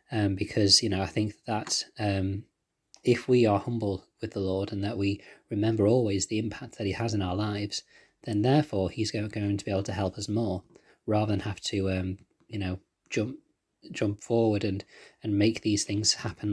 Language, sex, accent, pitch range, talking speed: English, male, British, 100-125 Hz, 200 wpm